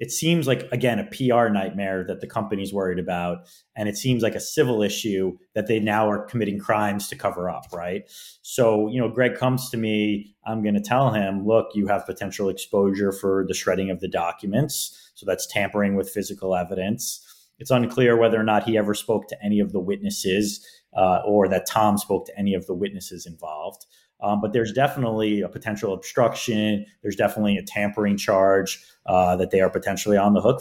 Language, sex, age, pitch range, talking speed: English, male, 30-49, 95-110 Hz, 200 wpm